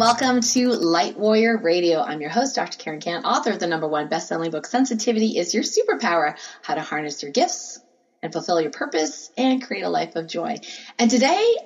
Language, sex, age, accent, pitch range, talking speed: English, female, 30-49, American, 195-255 Hz, 200 wpm